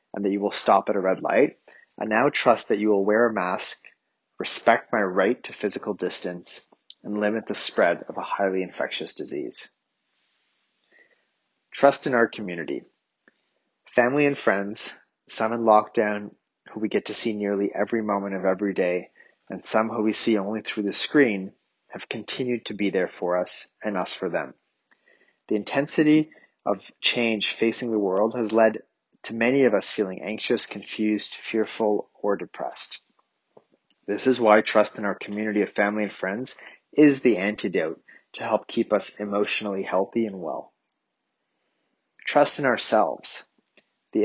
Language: English